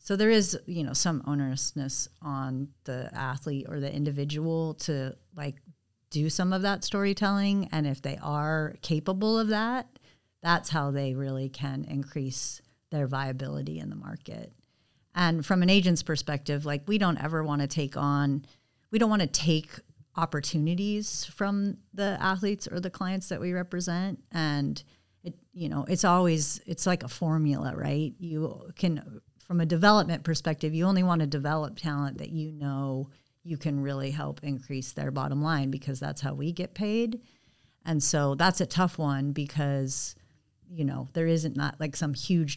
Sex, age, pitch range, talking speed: female, 40-59, 140-170 Hz, 170 wpm